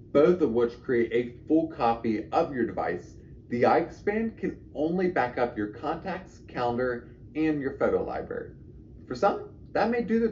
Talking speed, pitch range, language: 165 wpm, 110-150 Hz, English